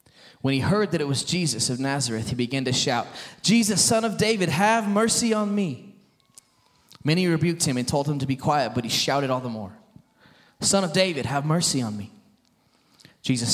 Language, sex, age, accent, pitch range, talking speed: English, male, 20-39, American, 110-155 Hz, 195 wpm